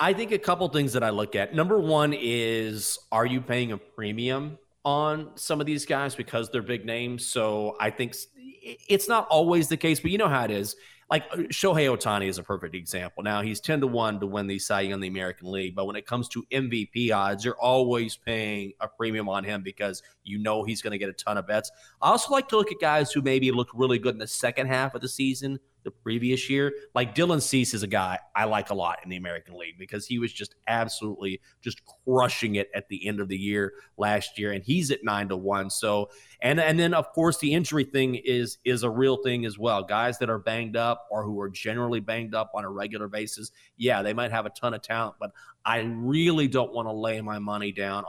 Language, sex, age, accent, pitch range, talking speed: English, male, 30-49, American, 105-135 Hz, 240 wpm